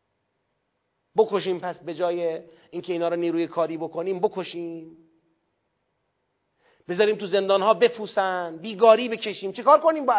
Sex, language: male, Persian